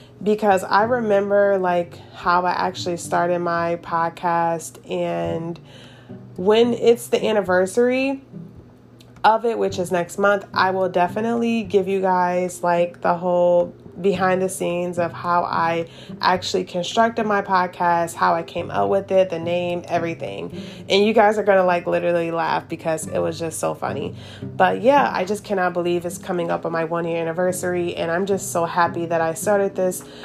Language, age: English, 20-39